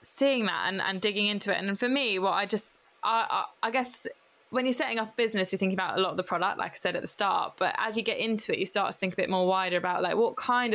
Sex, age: female, 10-29